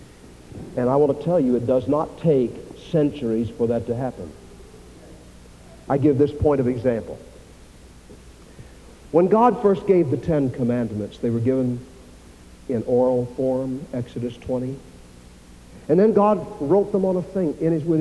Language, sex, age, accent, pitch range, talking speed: English, male, 60-79, American, 115-180 Hz, 150 wpm